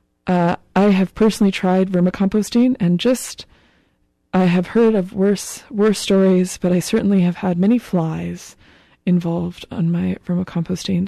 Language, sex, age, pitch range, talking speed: English, female, 20-39, 175-200 Hz, 140 wpm